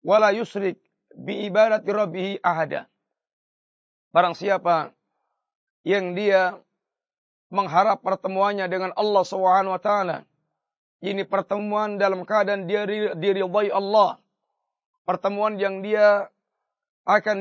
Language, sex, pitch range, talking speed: Malay, male, 195-215 Hz, 95 wpm